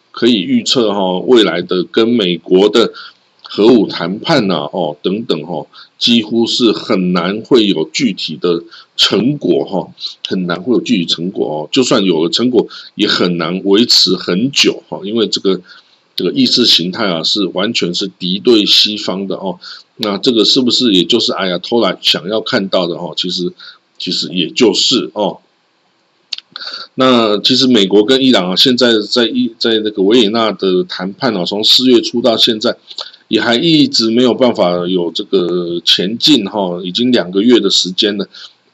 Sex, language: male, Chinese